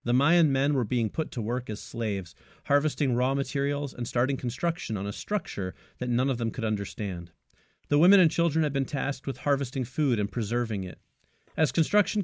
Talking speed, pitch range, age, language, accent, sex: 195 wpm, 110-145 Hz, 40-59, English, American, male